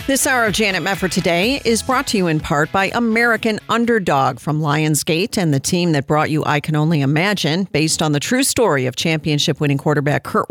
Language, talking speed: English, 205 wpm